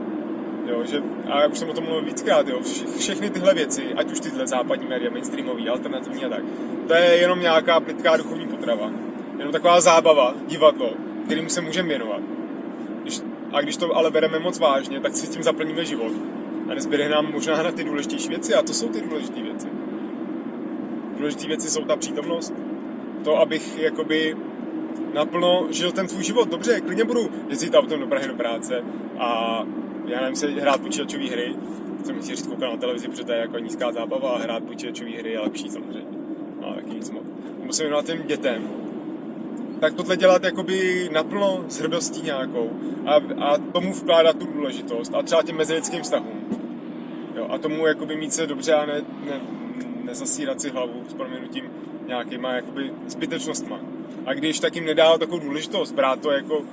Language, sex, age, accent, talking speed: Czech, male, 20-39, native, 170 wpm